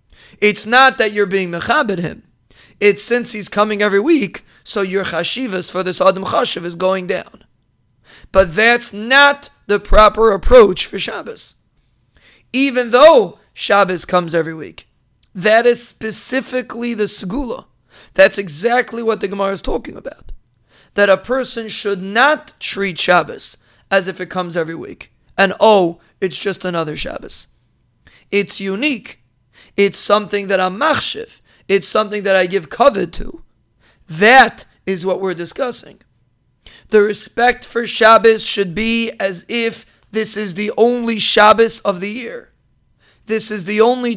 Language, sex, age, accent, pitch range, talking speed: English, male, 30-49, American, 185-230 Hz, 145 wpm